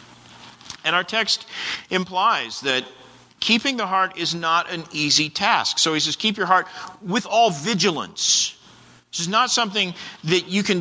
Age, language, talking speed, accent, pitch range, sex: 50-69, English, 160 wpm, American, 130-185 Hz, male